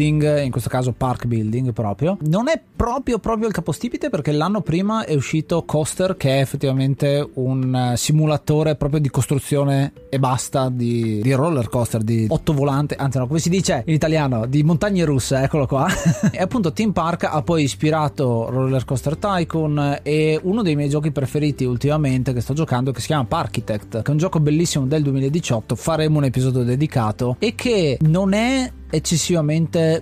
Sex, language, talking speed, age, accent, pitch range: male, Italian, 175 wpm, 30-49, native, 130-160 Hz